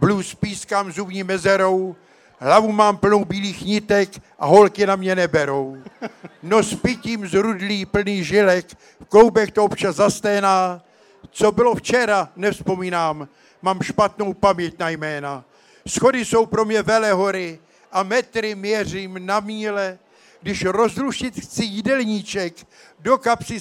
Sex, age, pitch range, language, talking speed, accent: male, 50-69, 185-220 Hz, Czech, 130 wpm, native